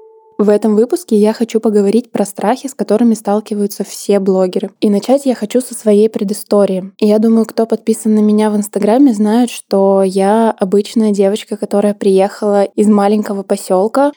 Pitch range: 215-235 Hz